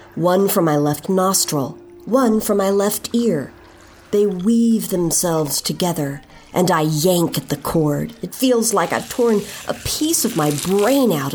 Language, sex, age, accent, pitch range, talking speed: English, female, 50-69, American, 155-220 Hz, 165 wpm